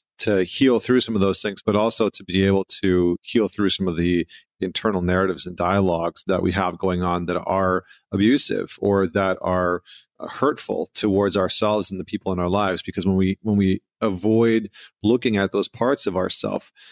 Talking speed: 190 wpm